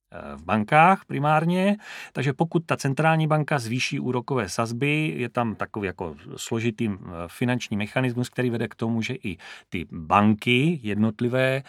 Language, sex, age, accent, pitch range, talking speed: Czech, male, 30-49, native, 105-130 Hz, 140 wpm